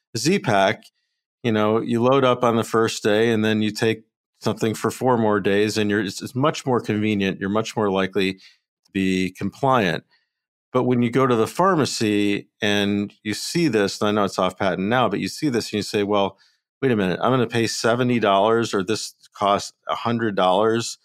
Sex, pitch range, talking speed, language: male, 95-115 Hz, 200 wpm, English